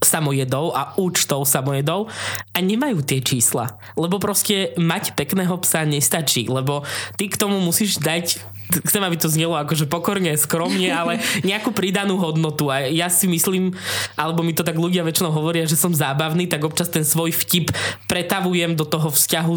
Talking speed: 165 wpm